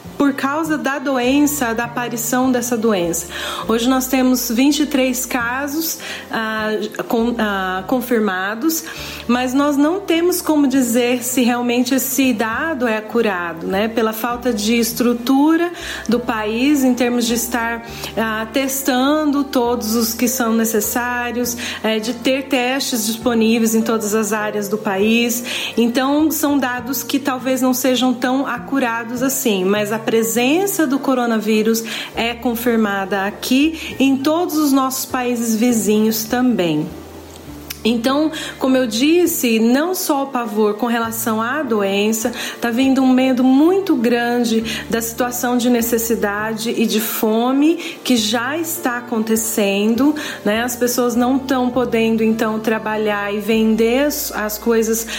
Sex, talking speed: female, 135 wpm